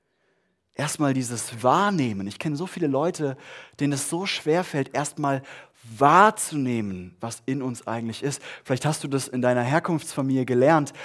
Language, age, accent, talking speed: German, 30-49, German, 150 wpm